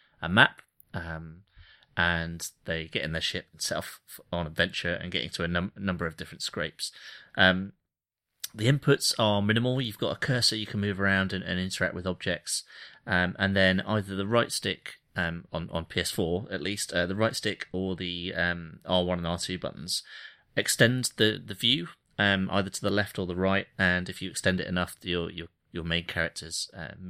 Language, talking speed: English, 195 wpm